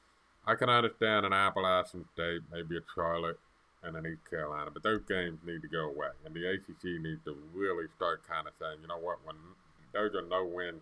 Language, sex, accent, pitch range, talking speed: English, male, American, 85-100 Hz, 205 wpm